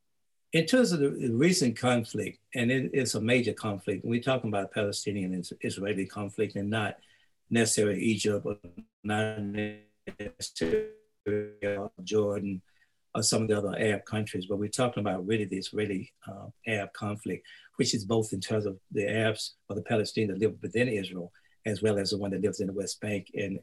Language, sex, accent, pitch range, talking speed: English, male, American, 100-115 Hz, 180 wpm